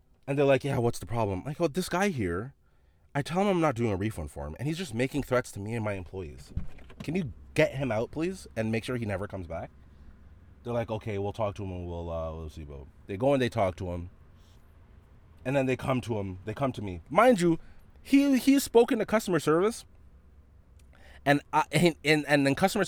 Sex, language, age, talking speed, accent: male, English, 30-49, 235 wpm, American